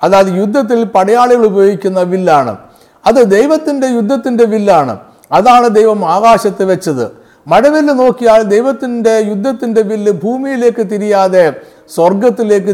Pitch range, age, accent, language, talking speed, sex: 190-245 Hz, 50-69, native, Malayalam, 100 wpm, male